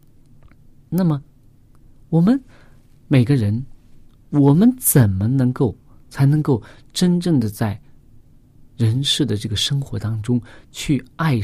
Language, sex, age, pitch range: Chinese, male, 50-69, 115-145 Hz